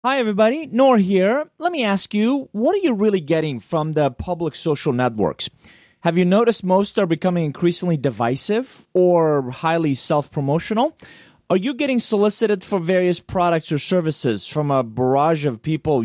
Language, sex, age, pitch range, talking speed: English, male, 30-49, 145-200 Hz, 160 wpm